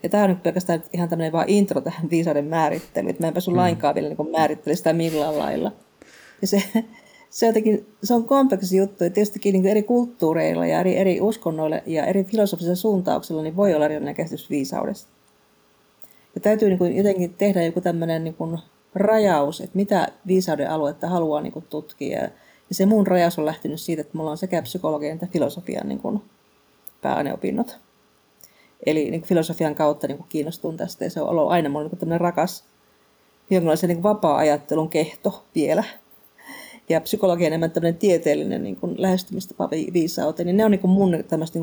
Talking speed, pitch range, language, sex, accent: 165 wpm, 160-200 Hz, Finnish, female, native